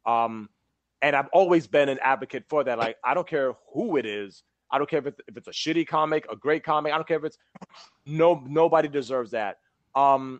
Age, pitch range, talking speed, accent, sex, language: 30-49, 125-155 Hz, 220 wpm, American, male, English